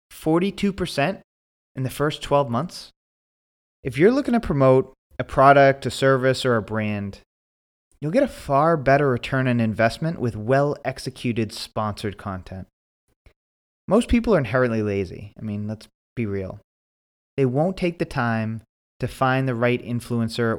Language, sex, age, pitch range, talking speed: English, male, 30-49, 105-145 Hz, 145 wpm